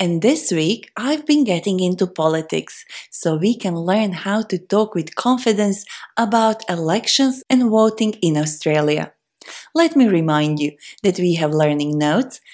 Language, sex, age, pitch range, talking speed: Persian, female, 30-49, 165-255 Hz, 155 wpm